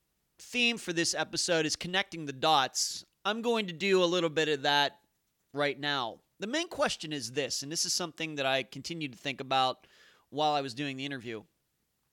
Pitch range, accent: 140-185 Hz, American